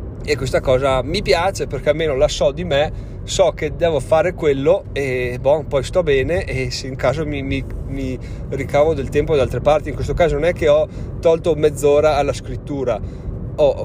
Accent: native